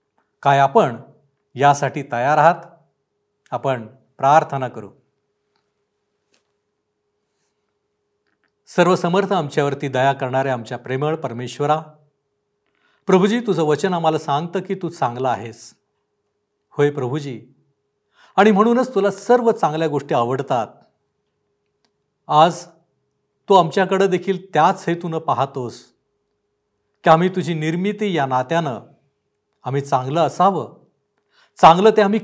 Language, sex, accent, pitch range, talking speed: Marathi, male, native, 135-185 Hz, 95 wpm